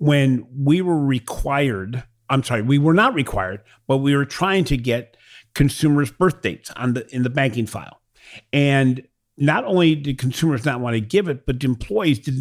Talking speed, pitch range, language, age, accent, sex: 185 wpm, 120-165 Hz, English, 50-69, American, male